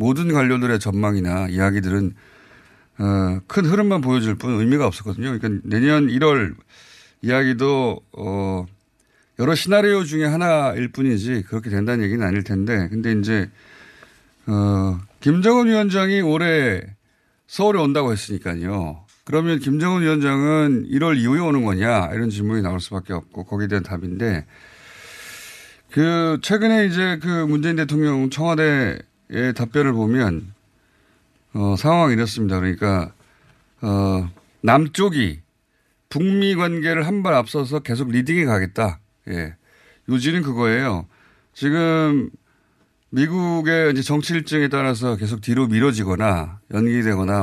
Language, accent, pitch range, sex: Korean, native, 100-150 Hz, male